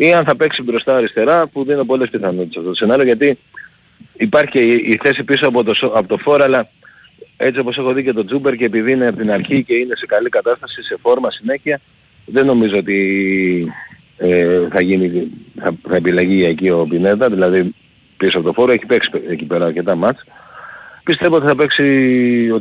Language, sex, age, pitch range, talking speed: Greek, male, 40-59, 105-155 Hz, 195 wpm